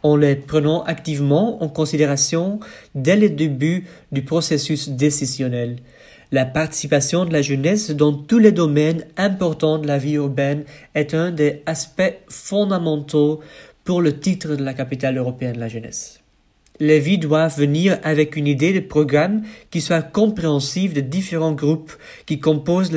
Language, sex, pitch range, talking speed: French, male, 145-170 Hz, 150 wpm